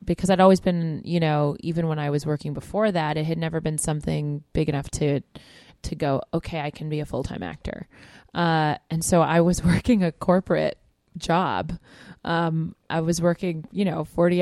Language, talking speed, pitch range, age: English, 190 wpm, 155-185 Hz, 20-39